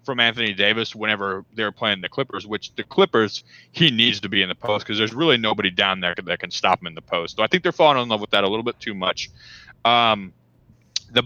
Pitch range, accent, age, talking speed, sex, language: 100-125 Hz, American, 20-39, 250 wpm, male, English